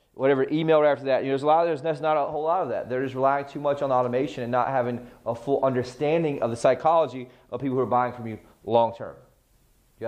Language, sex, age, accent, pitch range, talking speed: English, male, 30-49, American, 125-165 Hz, 270 wpm